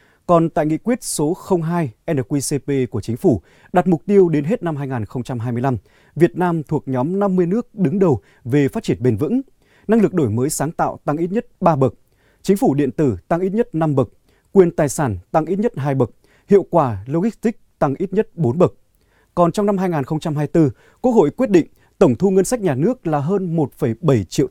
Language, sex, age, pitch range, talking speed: Vietnamese, male, 20-39, 125-180 Hz, 205 wpm